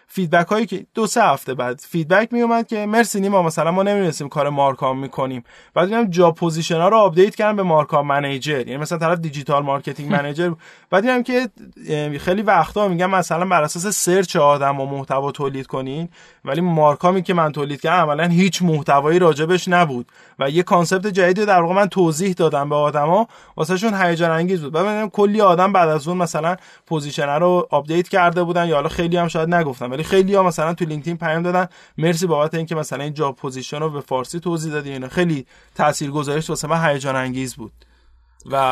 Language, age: Persian, 20-39